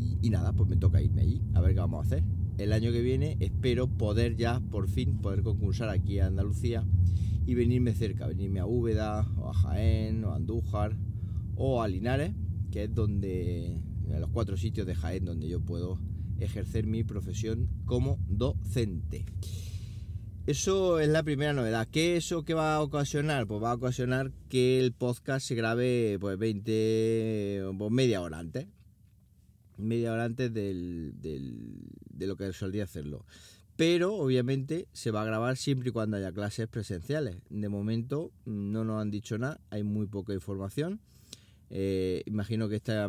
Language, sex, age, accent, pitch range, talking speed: Spanish, male, 30-49, Spanish, 95-115 Hz, 170 wpm